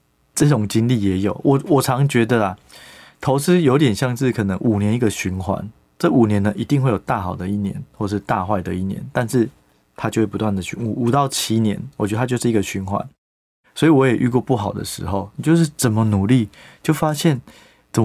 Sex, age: male, 20-39